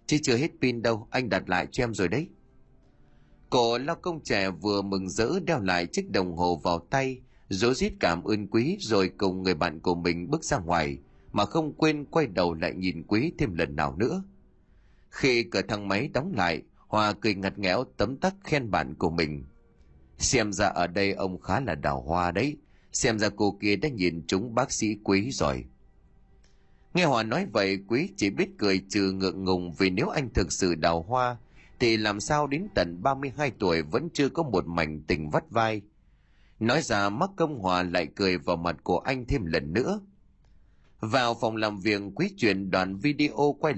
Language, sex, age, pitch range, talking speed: Vietnamese, male, 30-49, 90-130 Hz, 200 wpm